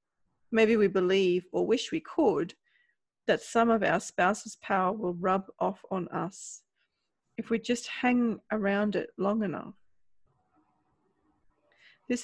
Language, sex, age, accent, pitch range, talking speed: English, female, 30-49, Australian, 185-230 Hz, 130 wpm